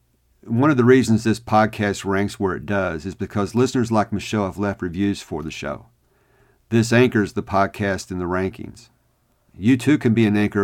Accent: American